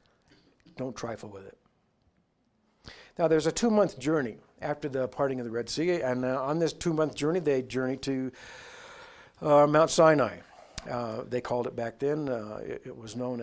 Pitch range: 120-155 Hz